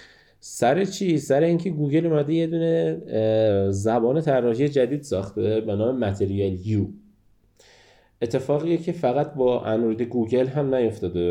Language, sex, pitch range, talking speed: Persian, male, 100-130 Hz, 120 wpm